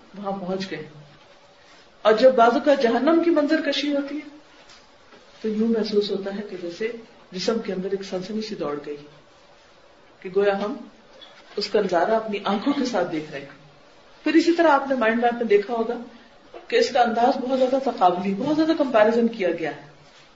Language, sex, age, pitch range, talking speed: Urdu, female, 40-59, 190-245 Hz, 185 wpm